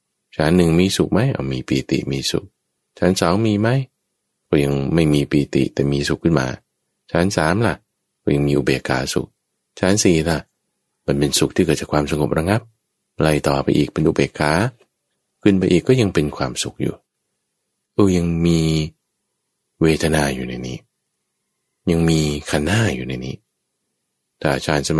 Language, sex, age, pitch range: English, male, 20-39, 70-90 Hz